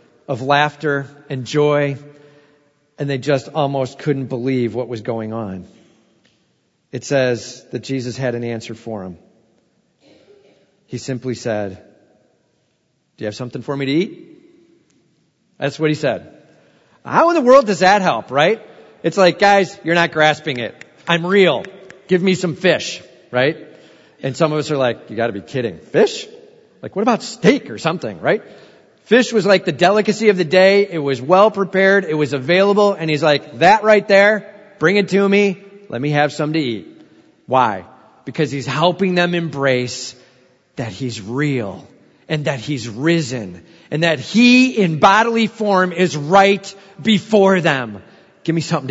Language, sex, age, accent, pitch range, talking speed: English, male, 40-59, American, 130-190 Hz, 165 wpm